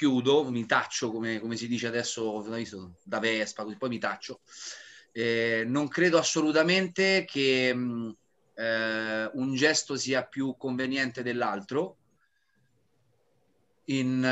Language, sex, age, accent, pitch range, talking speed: Italian, male, 30-49, native, 120-145 Hz, 115 wpm